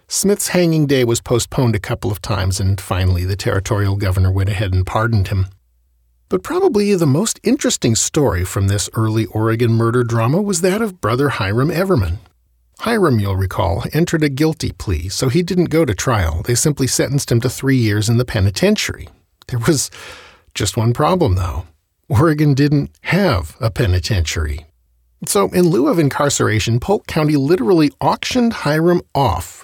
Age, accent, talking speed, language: 40-59, American, 165 wpm, English